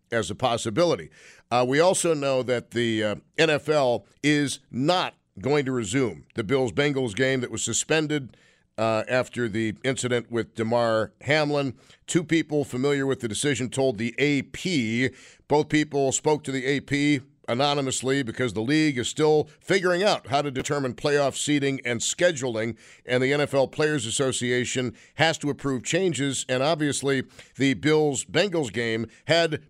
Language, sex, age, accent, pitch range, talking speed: English, male, 50-69, American, 120-145 Hz, 150 wpm